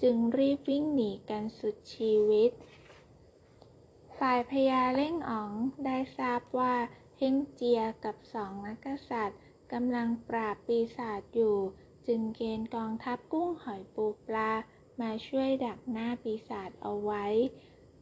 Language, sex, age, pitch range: Thai, female, 20-39, 210-255 Hz